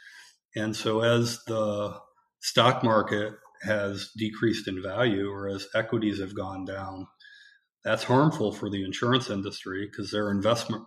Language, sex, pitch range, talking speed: English, male, 100-120 Hz, 140 wpm